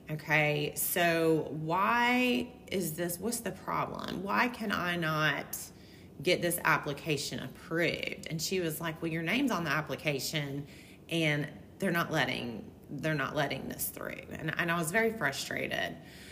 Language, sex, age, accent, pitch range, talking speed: English, female, 30-49, American, 150-200 Hz, 150 wpm